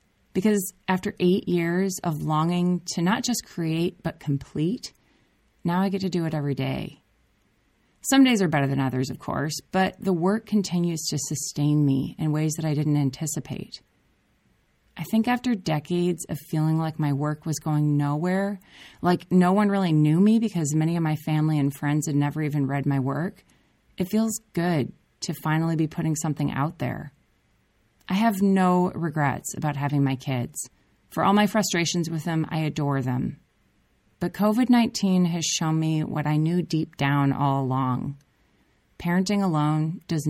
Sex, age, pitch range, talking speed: female, 30-49, 140-180 Hz, 170 wpm